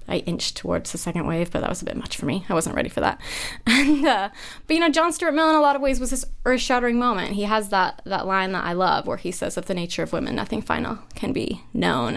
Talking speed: 275 wpm